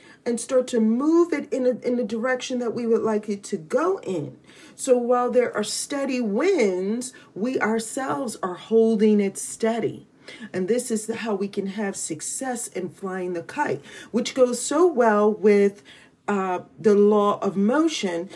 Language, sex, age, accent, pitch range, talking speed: English, female, 40-59, American, 210-265 Hz, 175 wpm